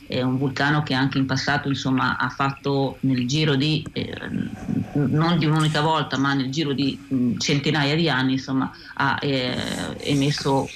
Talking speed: 160 wpm